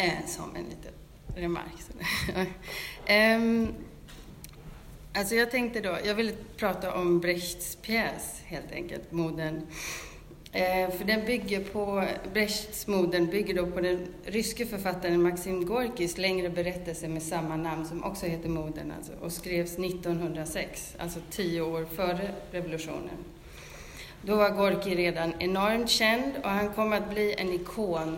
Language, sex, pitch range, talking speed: Swedish, female, 170-205 Hz, 130 wpm